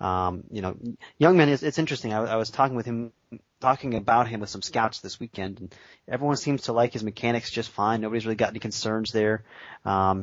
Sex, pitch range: male, 110-125 Hz